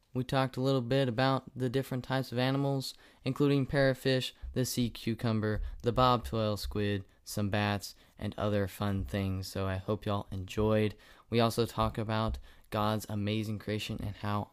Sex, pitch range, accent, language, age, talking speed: male, 100-120 Hz, American, English, 20-39, 165 wpm